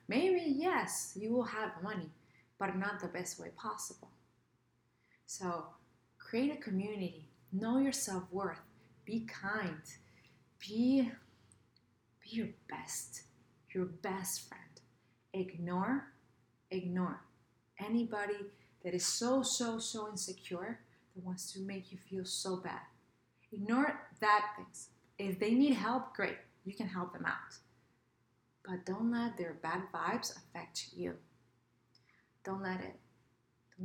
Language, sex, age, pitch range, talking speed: English, female, 30-49, 140-205 Hz, 120 wpm